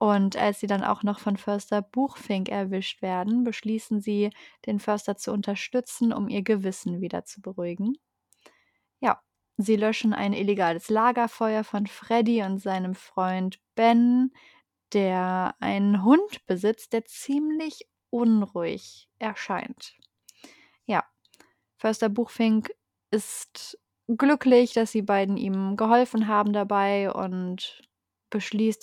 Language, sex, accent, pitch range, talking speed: German, female, German, 200-235 Hz, 120 wpm